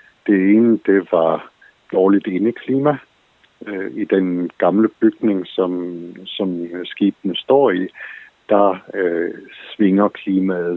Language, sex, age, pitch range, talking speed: Danish, male, 60-79, 90-105 Hz, 105 wpm